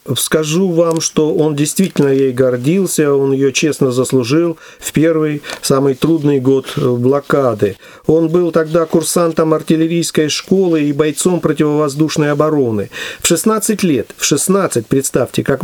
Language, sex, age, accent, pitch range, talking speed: Russian, male, 50-69, native, 140-180 Hz, 130 wpm